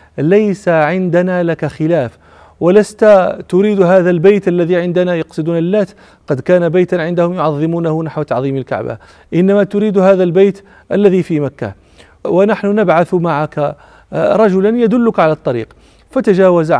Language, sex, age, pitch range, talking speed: English, male, 40-59, 150-185 Hz, 125 wpm